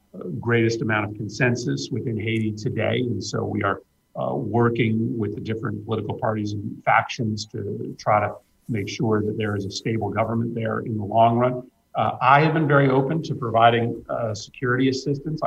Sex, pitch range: male, 105-125 Hz